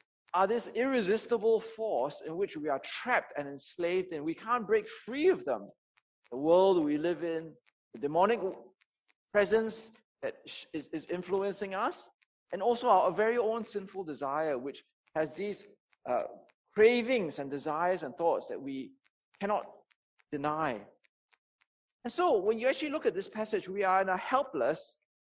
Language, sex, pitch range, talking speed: English, male, 165-245 Hz, 150 wpm